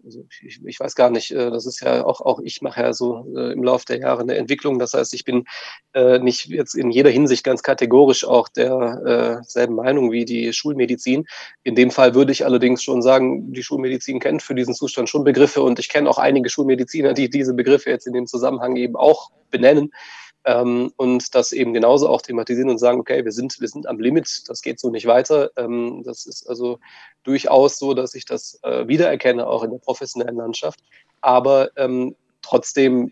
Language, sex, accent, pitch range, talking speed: German, male, German, 120-135 Hz, 200 wpm